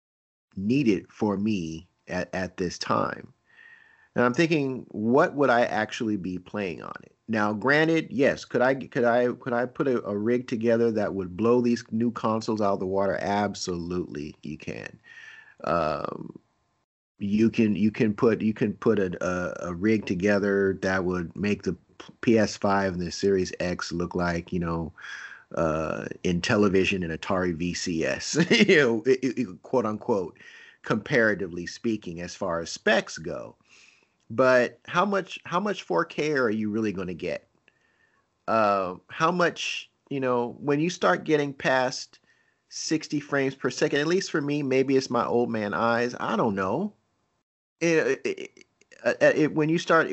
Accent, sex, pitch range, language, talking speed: American, male, 100-145 Hz, English, 165 wpm